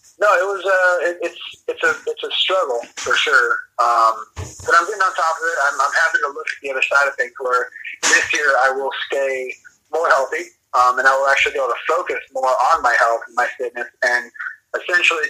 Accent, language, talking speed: American, English, 230 wpm